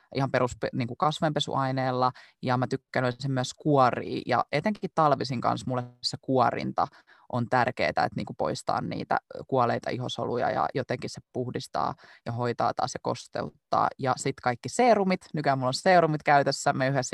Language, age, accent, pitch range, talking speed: Finnish, 20-39, native, 125-145 Hz, 155 wpm